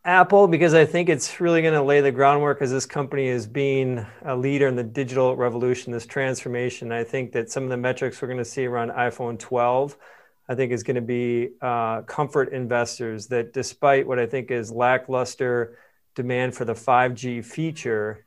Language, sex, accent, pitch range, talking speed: English, male, American, 115-130 Hz, 195 wpm